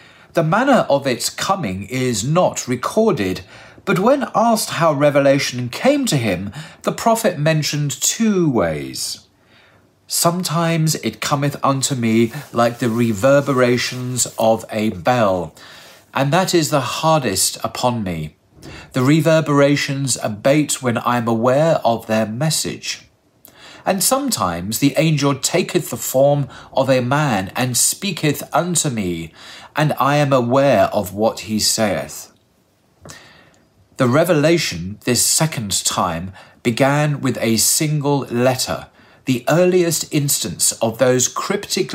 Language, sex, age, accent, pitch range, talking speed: English, male, 40-59, British, 110-150 Hz, 125 wpm